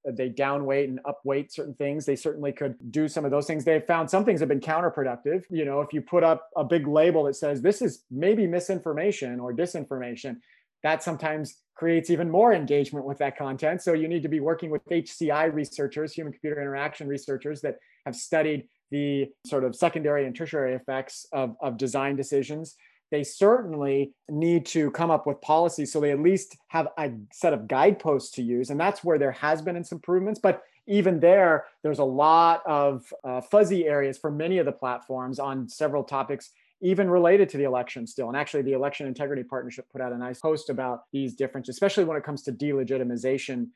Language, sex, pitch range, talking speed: English, male, 140-170 Hz, 200 wpm